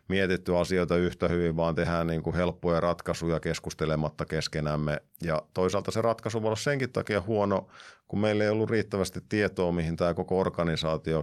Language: Finnish